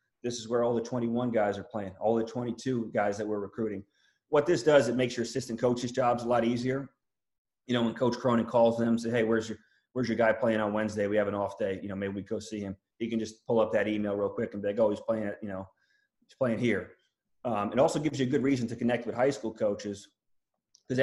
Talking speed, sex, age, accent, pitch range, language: 265 wpm, male, 30-49, American, 110-125 Hz, English